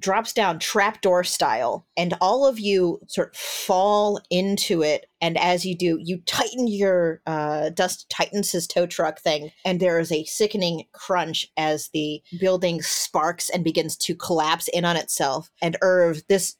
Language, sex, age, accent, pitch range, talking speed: English, female, 30-49, American, 160-185 Hz, 170 wpm